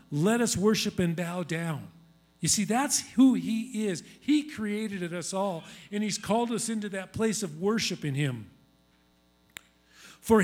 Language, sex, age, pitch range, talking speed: English, male, 50-69, 150-205 Hz, 160 wpm